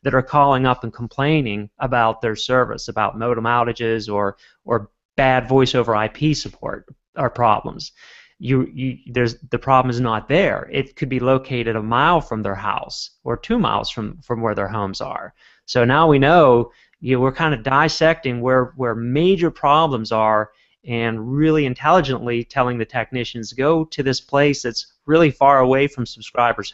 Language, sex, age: English, male, 30-49